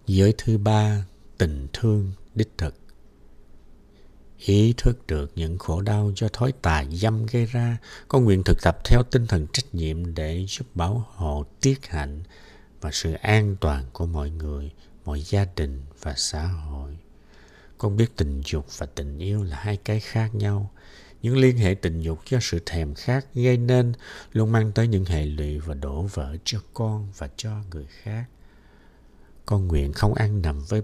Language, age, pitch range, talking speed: Vietnamese, 60-79, 80-115 Hz, 175 wpm